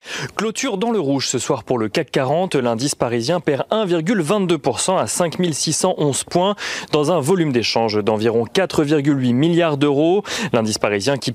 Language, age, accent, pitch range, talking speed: French, 30-49, French, 125-175 Hz, 155 wpm